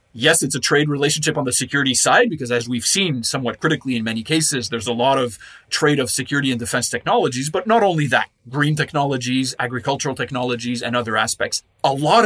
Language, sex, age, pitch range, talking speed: English, male, 30-49, 130-155 Hz, 200 wpm